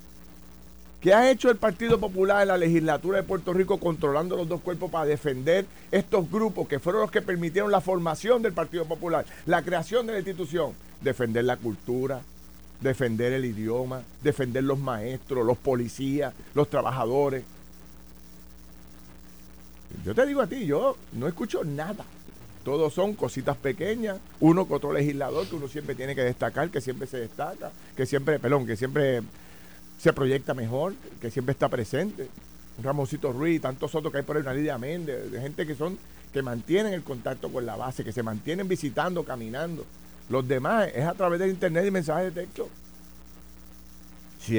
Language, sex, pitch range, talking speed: Spanish, male, 110-165 Hz, 170 wpm